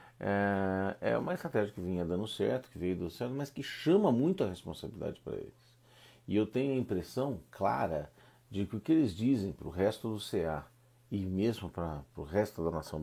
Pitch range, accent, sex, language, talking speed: 80-110 Hz, Brazilian, male, Portuguese, 200 wpm